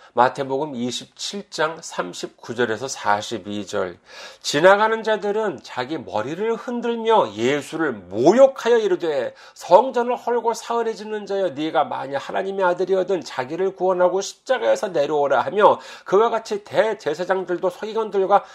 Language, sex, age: Korean, male, 40-59